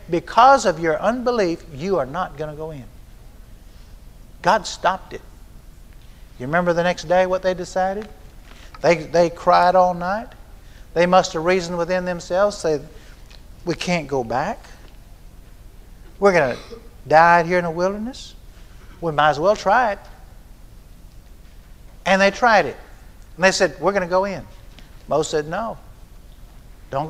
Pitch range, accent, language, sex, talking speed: 135-190 Hz, American, English, male, 150 wpm